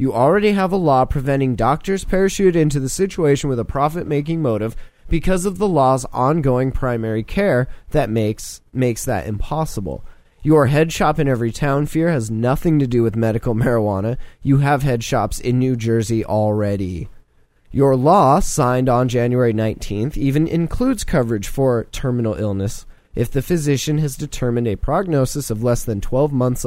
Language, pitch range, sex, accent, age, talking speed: English, 115-150 Hz, male, American, 20-39, 165 wpm